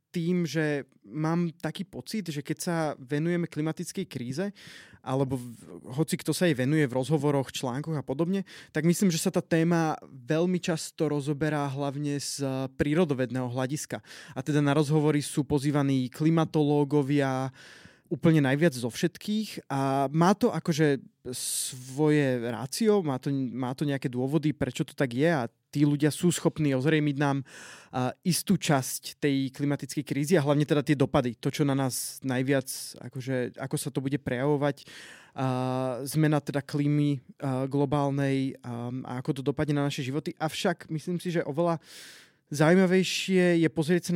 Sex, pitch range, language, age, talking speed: male, 135-160 Hz, Slovak, 20-39, 155 wpm